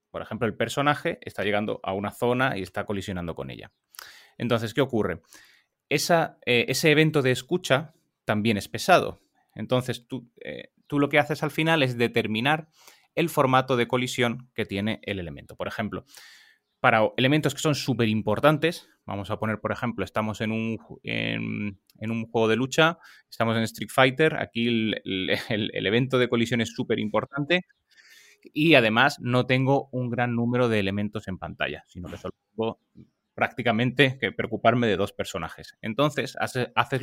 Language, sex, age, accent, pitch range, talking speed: Spanish, male, 30-49, Spanish, 110-135 Hz, 160 wpm